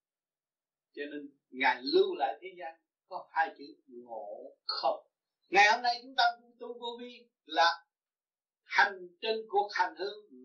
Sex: male